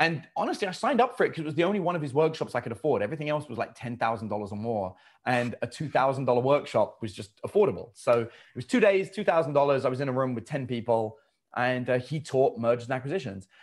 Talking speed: 240 wpm